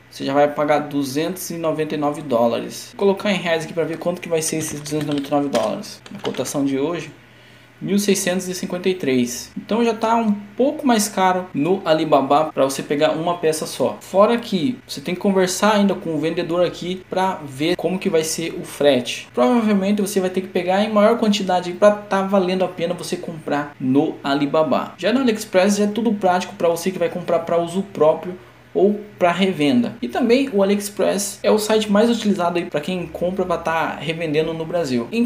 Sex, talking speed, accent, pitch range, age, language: male, 195 wpm, Brazilian, 155-210 Hz, 10-29, Portuguese